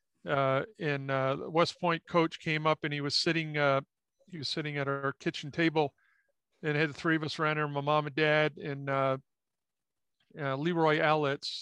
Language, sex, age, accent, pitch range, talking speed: English, male, 50-69, American, 145-165 Hz, 190 wpm